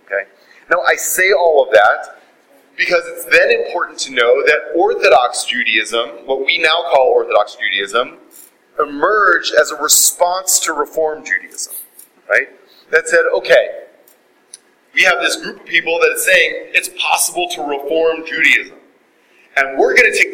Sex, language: male, English